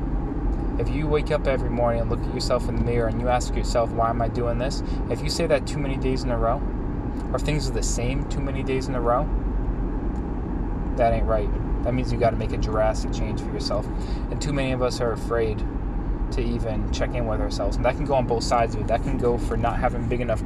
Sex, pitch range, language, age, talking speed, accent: male, 90-125 Hz, English, 20-39, 260 wpm, American